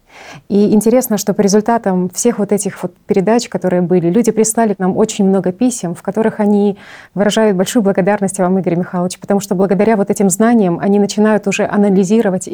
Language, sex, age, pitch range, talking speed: Russian, female, 30-49, 180-210 Hz, 180 wpm